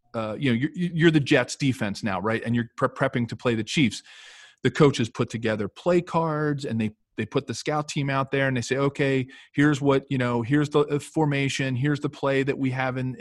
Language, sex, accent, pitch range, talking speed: English, male, American, 120-150 Hz, 230 wpm